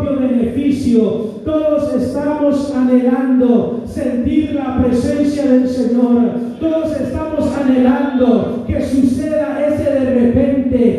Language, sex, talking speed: Spanish, male, 85 wpm